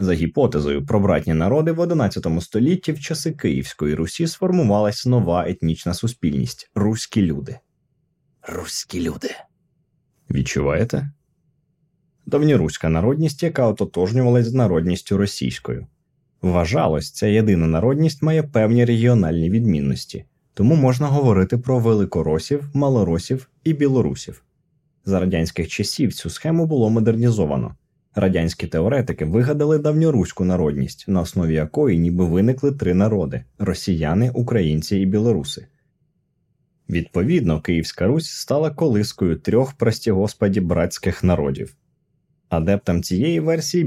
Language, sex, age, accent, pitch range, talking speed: Ukrainian, male, 20-39, native, 90-145 Hz, 110 wpm